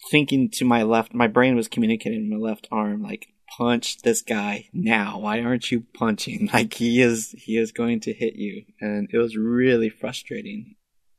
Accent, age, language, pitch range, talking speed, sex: American, 30-49, English, 105-120 Hz, 190 wpm, male